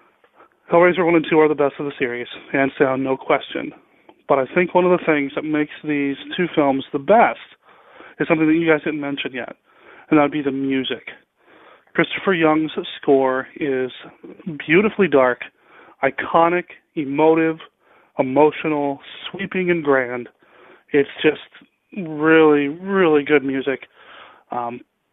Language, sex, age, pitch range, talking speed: English, male, 30-49, 135-160 Hz, 145 wpm